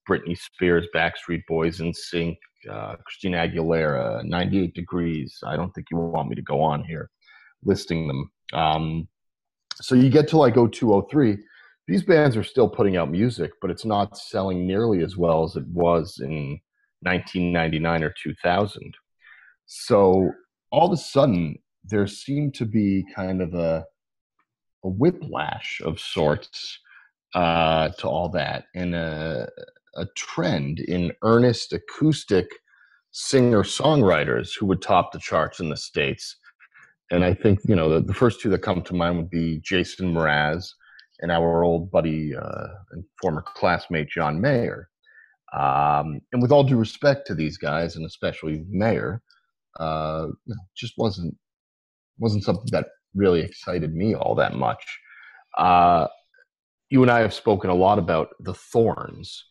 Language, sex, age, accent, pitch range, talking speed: English, male, 30-49, American, 80-110 Hz, 155 wpm